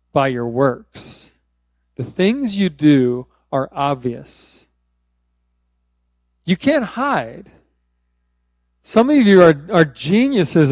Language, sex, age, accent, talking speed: English, male, 40-59, American, 100 wpm